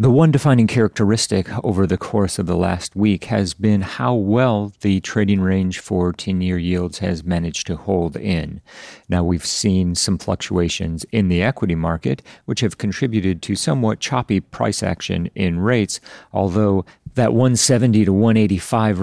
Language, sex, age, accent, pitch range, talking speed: English, male, 40-59, American, 90-110 Hz, 160 wpm